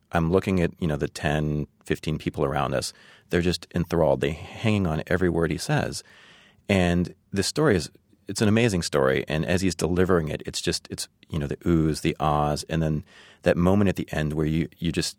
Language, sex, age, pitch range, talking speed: English, male, 30-49, 80-95 Hz, 215 wpm